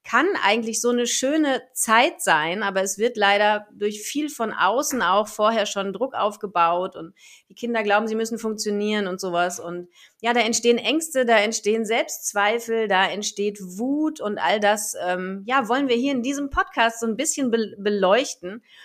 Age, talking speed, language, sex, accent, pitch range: 30-49, 175 wpm, German, female, German, 195-240 Hz